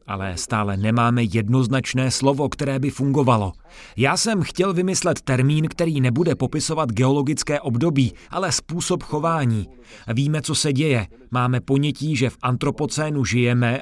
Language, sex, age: Czech, male, 30-49